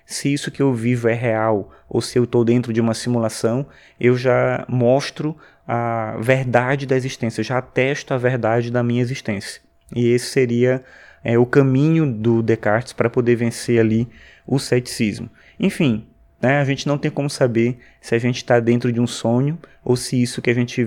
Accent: Brazilian